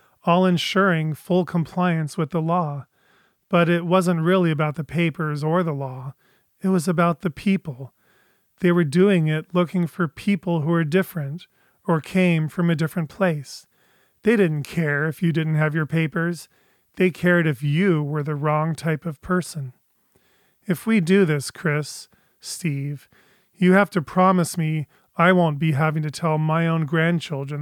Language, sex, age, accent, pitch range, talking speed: English, male, 40-59, American, 150-175 Hz, 165 wpm